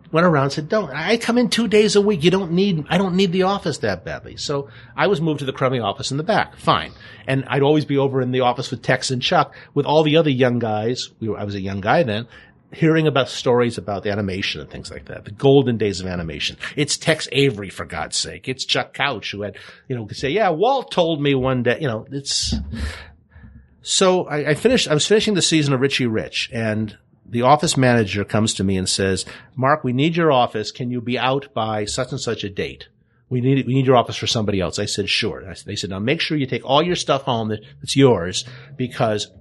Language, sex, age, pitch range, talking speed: English, male, 50-69, 110-150 Hz, 255 wpm